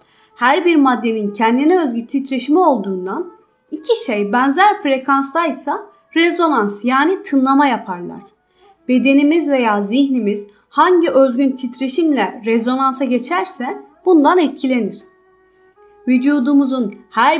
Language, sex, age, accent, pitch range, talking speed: Turkish, female, 30-49, native, 245-330 Hz, 95 wpm